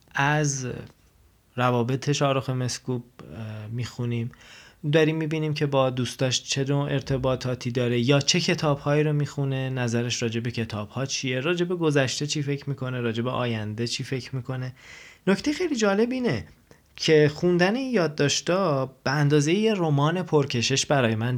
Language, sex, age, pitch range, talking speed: Persian, male, 20-39, 120-155 Hz, 130 wpm